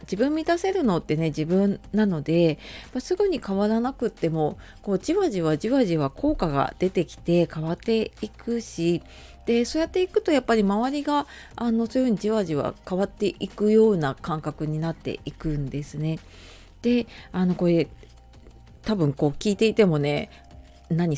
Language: Japanese